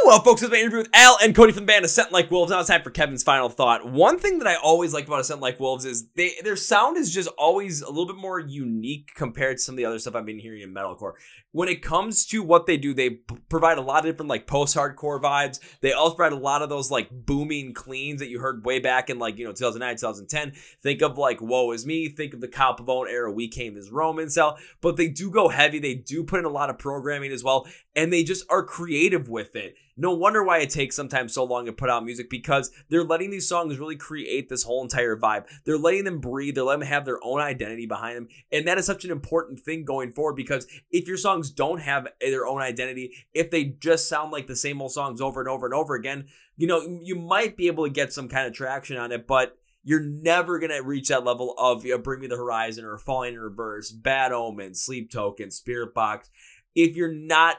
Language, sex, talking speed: English, male, 250 wpm